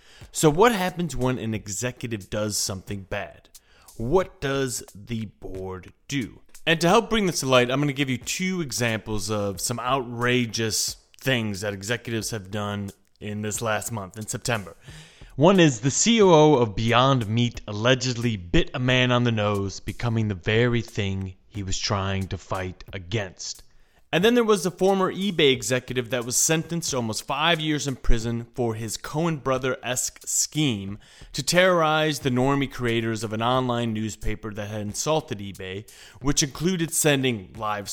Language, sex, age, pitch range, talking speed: English, male, 30-49, 110-145 Hz, 165 wpm